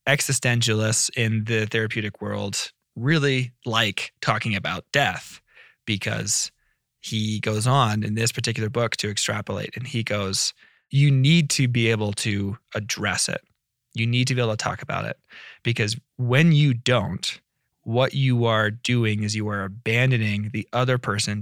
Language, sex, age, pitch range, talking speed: English, male, 20-39, 110-130 Hz, 155 wpm